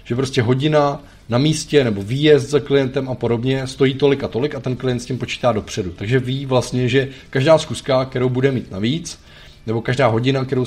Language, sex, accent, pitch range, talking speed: Czech, male, native, 115-140 Hz, 200 wpm